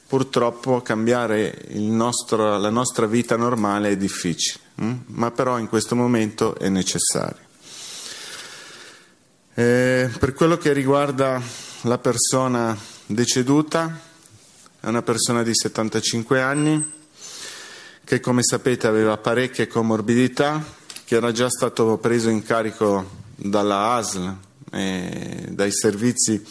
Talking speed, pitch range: 115 wpm, 105-125 Hz